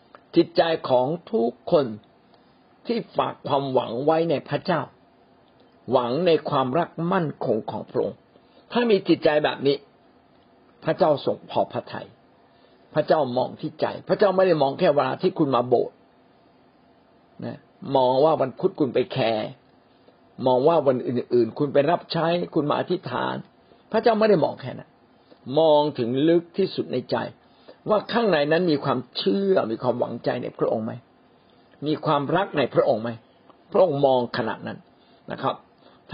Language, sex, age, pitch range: Thai, male, 60-79, 135-190 Hz